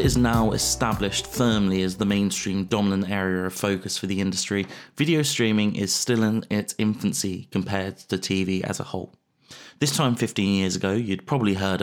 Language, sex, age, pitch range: English, male, 30-49, 95-110 Hz